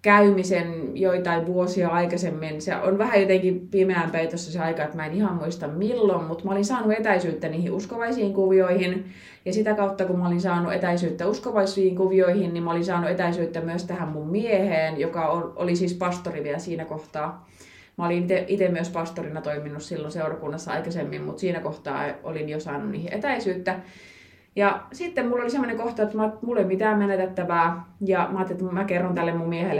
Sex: female